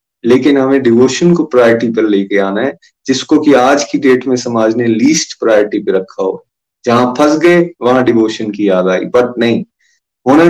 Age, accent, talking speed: 30-49, native, 190 wpm